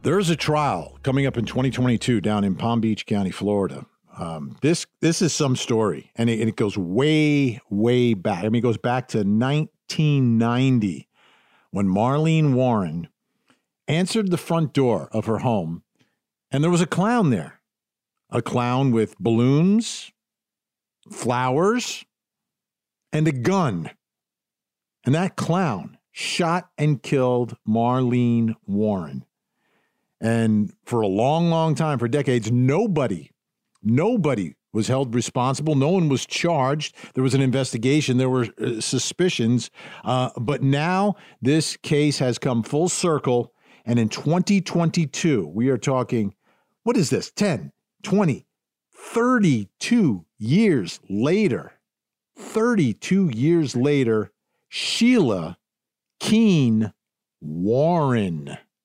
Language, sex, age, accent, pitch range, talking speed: English, male, 50-69, American, 115-160 Hz, 120 wpm